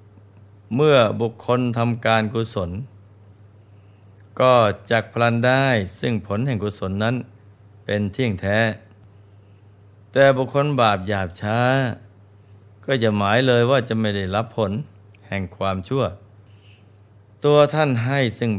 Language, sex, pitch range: Thai, male, 100-115 Hz